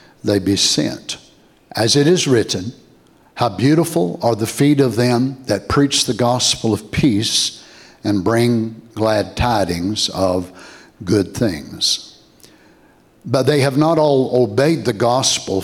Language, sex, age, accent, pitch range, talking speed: English, male, 60-79, American, 100-130 Hz, 135 wpm